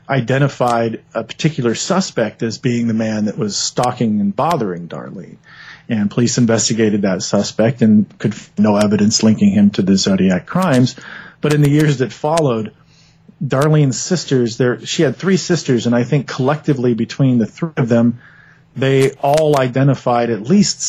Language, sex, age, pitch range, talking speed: English, male, 40-59, 115-155 Hz, 165 wpm